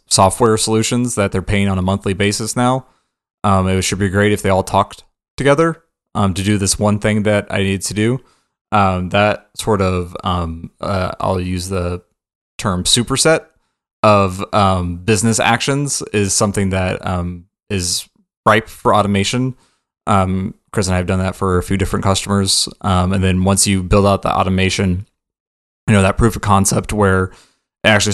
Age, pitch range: 20-39, 95-105 Hz